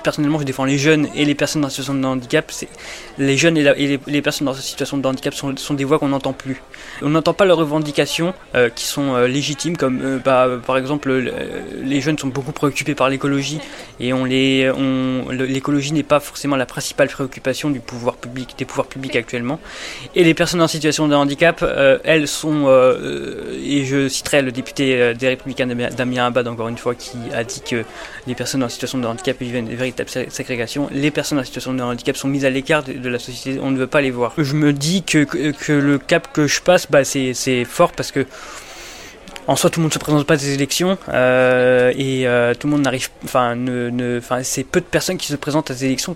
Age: 20-39